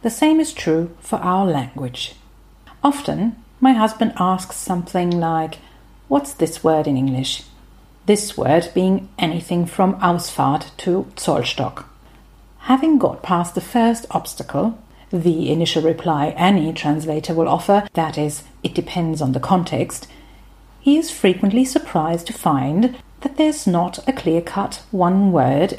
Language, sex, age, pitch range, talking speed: German, female, 50-69, 155-215 Hz, 135 wpm